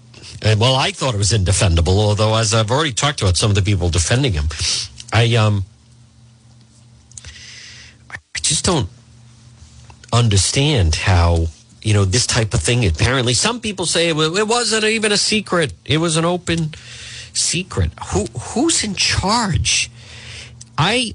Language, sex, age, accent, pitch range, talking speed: English, male, 50-69, American, 105-140 Hz, 145 wpm